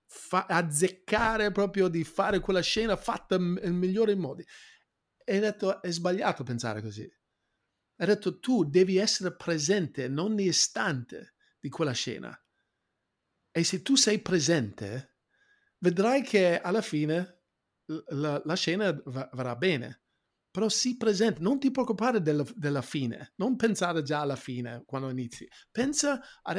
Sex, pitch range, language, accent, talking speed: male, 145-200 Hz, Italian, native, 145 wpm